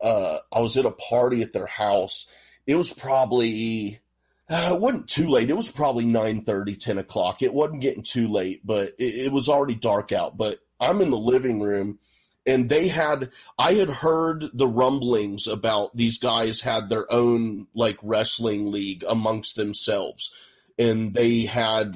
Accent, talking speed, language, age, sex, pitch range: American, 170 wpm, English, 30-49, male, 110-135 Hz